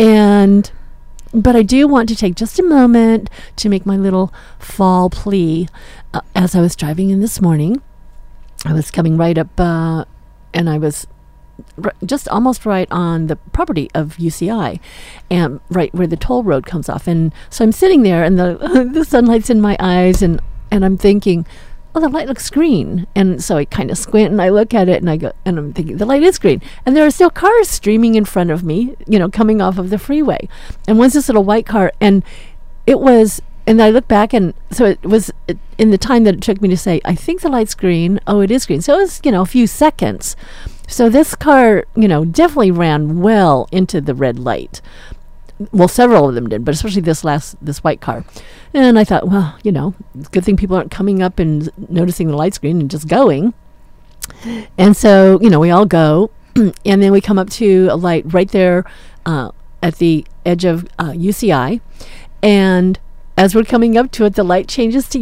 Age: 50-69